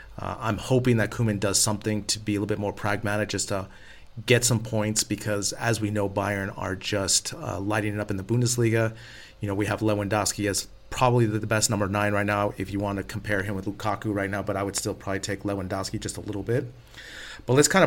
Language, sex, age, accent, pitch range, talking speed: English, male, 30-49, American, 100-115 Hz, 235 wpm